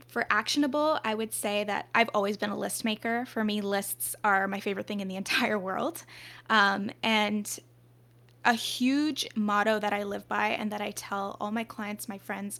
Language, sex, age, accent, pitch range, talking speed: English, female, 10-29, American, 200-235 Hz, 195 wpm